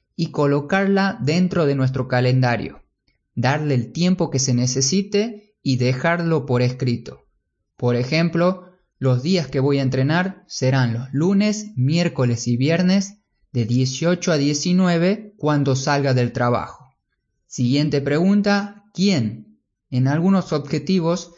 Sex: male